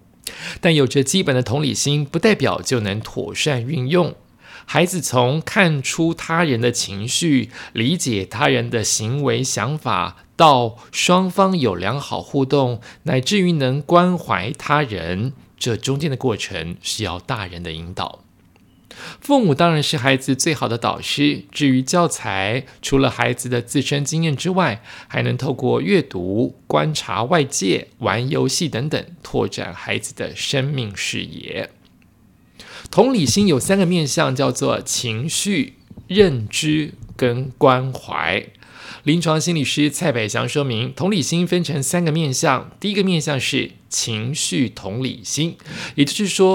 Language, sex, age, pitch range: Chinese, male, 50-69, 120-165 Hz